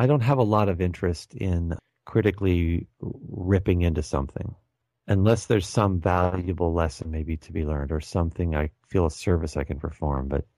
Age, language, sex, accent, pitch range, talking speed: 40-59, English, male, American, 80-105 Hz, 175 wpm